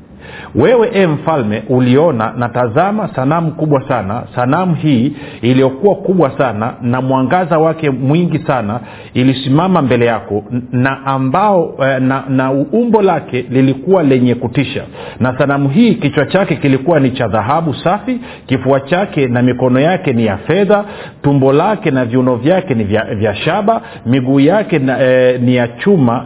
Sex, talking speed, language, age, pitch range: male, 145 wpm, Swahili, 50-69, 125-165 Hz